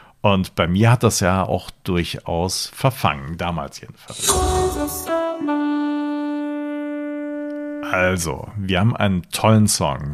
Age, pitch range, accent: 50-69, 95-120 Hz, German